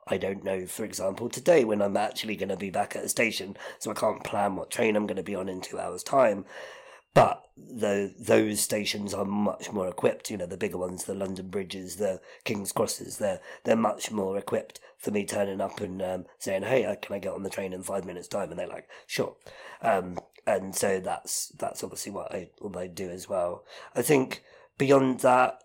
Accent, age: British, 40-59